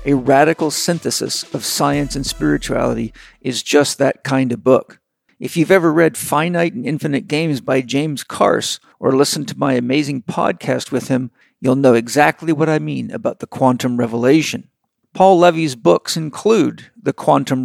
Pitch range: 130-160 Hz